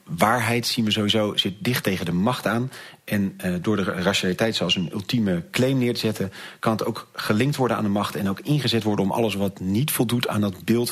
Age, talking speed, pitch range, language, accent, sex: 40-59, 230 wpm, 95-115 Hz, Dutch, Dutch, male